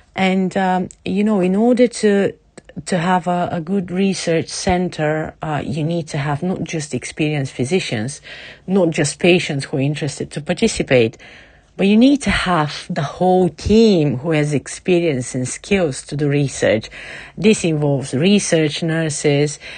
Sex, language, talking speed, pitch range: female, English, 155 wpm, 150-185 Hz